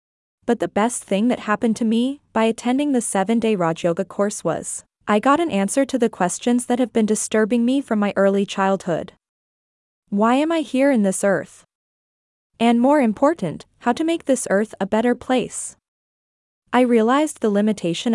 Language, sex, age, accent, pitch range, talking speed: English, female, 20-39, American, 195-245 Hz, 180 wpm